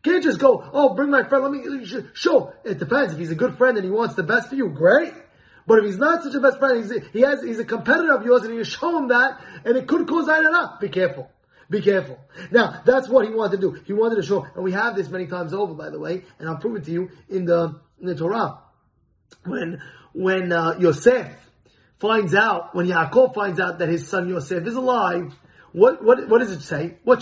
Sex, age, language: male, 20-39, English